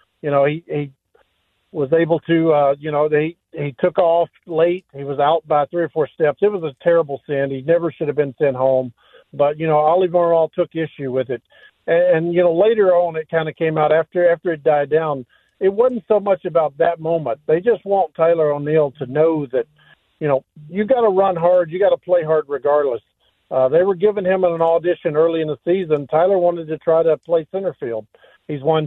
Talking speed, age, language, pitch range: 225 wpm, 50-69, English, 150-180 Hz